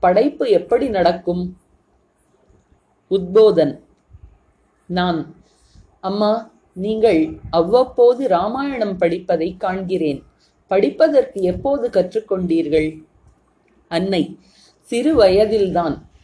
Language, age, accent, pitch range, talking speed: Tamil, 30-49, native, 180-250 Hz, 65 wpm